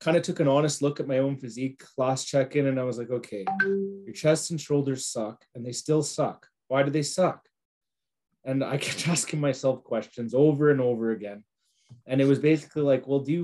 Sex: male